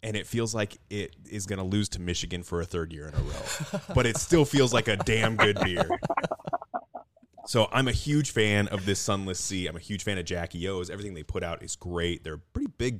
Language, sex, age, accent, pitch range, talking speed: English, male, 30-49, American, 80-95 Hz, 245 wpm